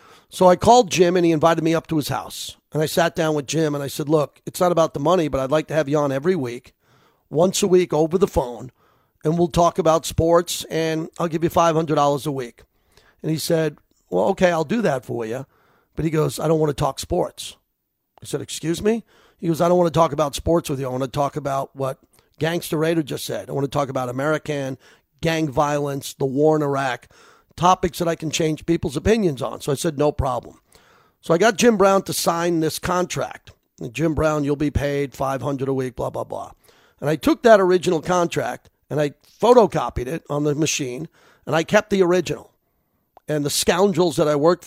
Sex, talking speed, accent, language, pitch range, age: male, 225 wpm, American, English, 145-175 Hz, 40-59